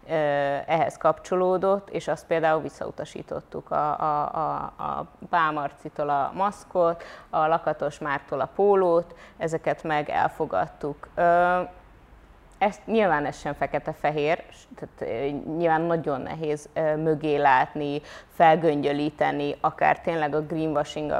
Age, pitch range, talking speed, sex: 20-39, 150-180 Hz, 100 wpm, female